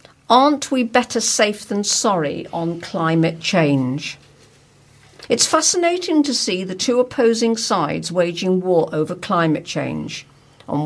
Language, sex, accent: English, female, British